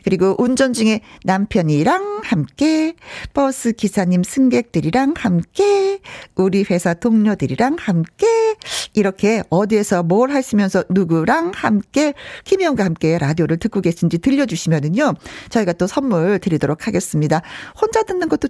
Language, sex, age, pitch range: Korean, female, 50-69, 180-290 Hz